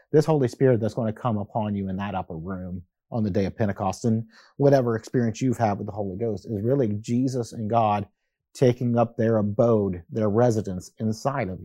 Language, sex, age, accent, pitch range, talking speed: English, male, 30-49, American, 110-130 Hz, 205 wpm